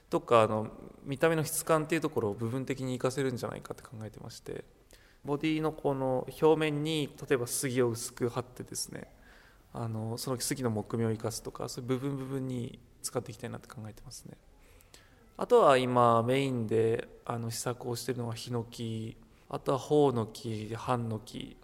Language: Japanese